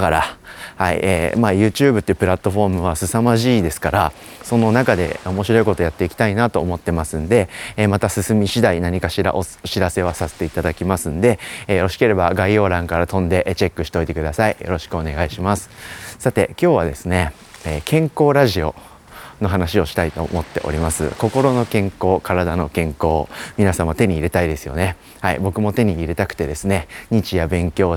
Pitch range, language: 85-115 Hz, Japanese